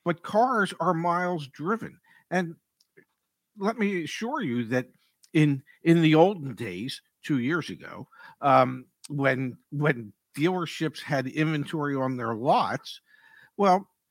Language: English